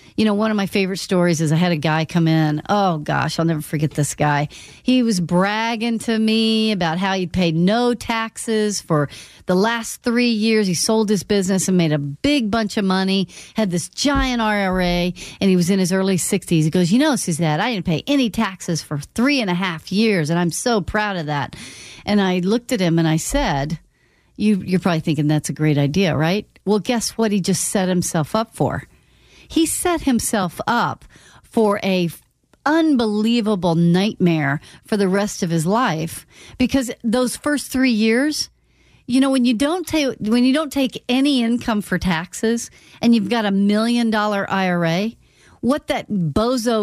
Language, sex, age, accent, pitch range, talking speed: English, female, 40-59, American, 175-235 Hz, 195 wpm